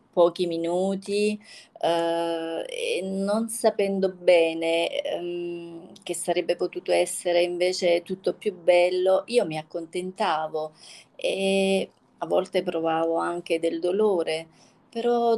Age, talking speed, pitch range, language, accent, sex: 30-49, 105 wpm, 170-200 Hz, Italian, native, female